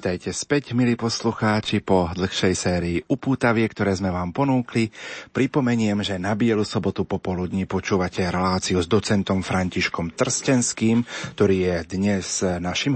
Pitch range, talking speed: 90-115 Hz, 130 wpm